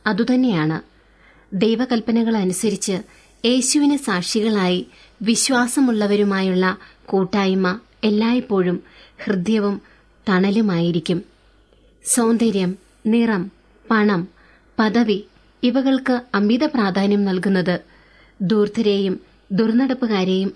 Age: 20-39